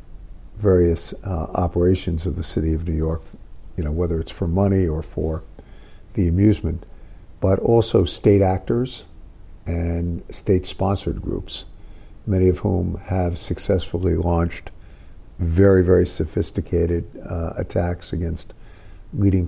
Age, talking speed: 50-69, 120 wpm